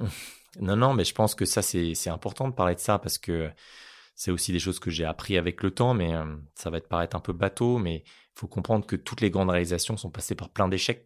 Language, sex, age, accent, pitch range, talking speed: French, male, 20-39, French, 85-100 Hz, 260 wpm